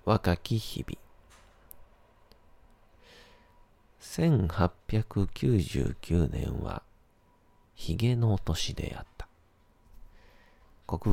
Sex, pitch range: male, 85-110 Hz